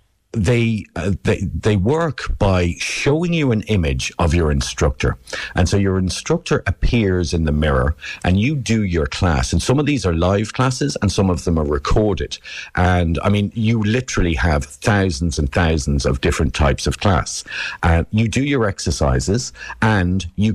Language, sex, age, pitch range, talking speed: English, male, 50-69, 85-110 Hz, 175 wpm